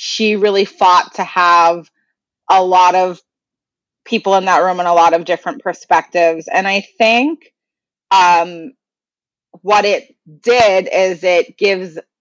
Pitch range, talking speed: 175-205 Hz, 140 wpm